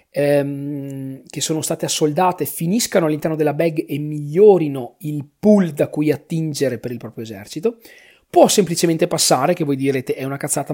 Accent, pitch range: native, 130-170 Hz